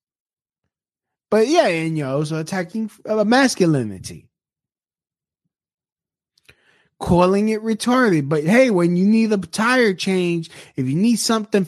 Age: 20-39